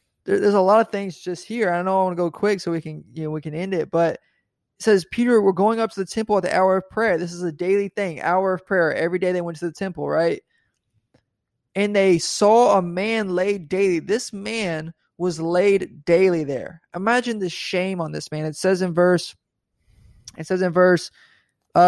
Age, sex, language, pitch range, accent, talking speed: 20-39, male, English, 165-200 Hz, American, 225 wpm